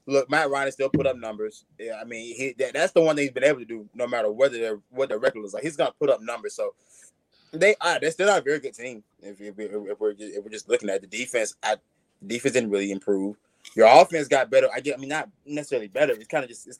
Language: English